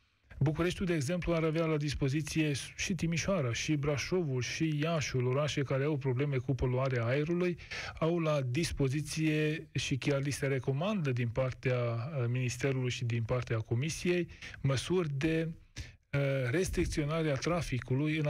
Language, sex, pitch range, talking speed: Romanian, male, 125-155 Hz, 130 wpm